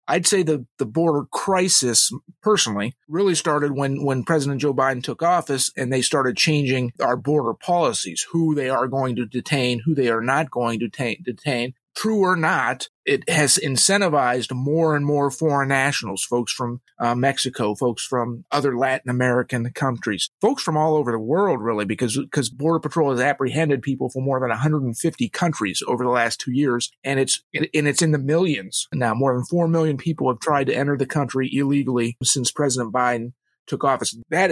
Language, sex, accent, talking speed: English, male, American, 185 wpm